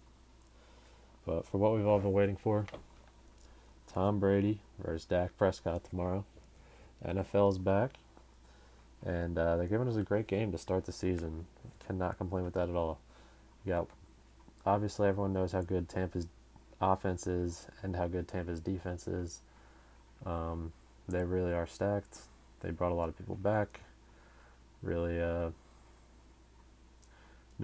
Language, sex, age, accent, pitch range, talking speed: English, male, 20-39, American, 70-95 Hz, 140 wpm